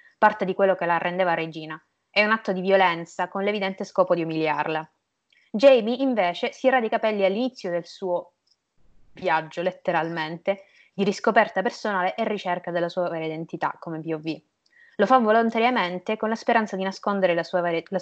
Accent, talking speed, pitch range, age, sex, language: native, 170 wpm, 165-205 Hz, 20-39, female, Italian